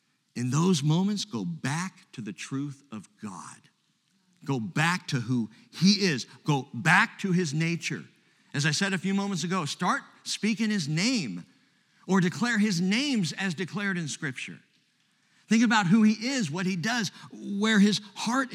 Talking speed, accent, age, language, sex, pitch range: 165 wpm, American, 50-69, English, male, 150-210 Hz